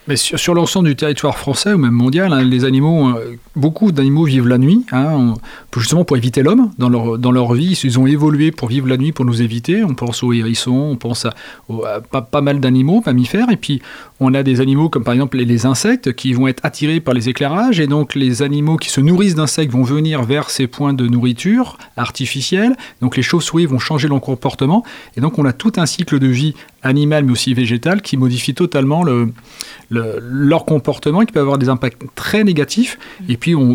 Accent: French